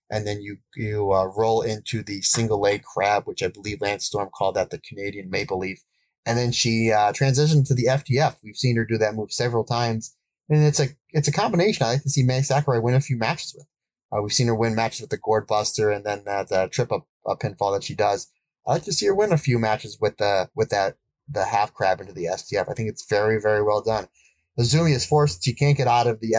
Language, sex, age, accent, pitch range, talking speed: English, male, 30-49, American, 105-125 Hz, 250 wpm